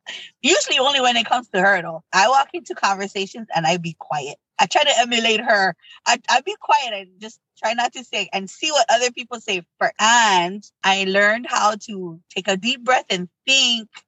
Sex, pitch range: female, 180-255 Hz